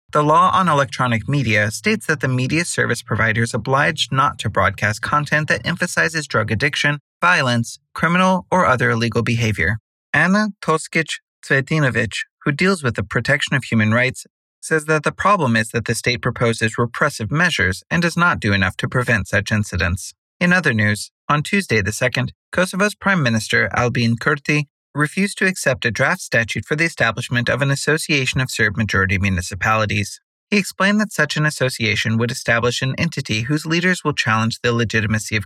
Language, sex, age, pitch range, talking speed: English, male, 30-49, 115-160 Hz, 170 wpm